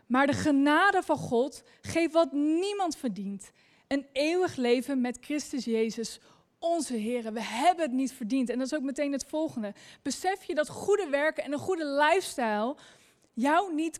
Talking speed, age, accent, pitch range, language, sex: 170 wpm, 20-39, Dutch, 255-330 Hz, Dutch, female